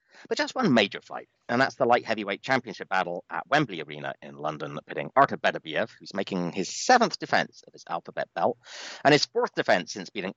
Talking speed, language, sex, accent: 205 wpm, English, male, British